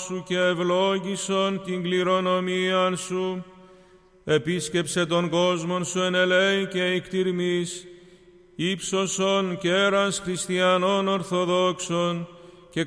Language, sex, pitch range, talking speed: Greek, male, 180-185 Hz, 85 wpm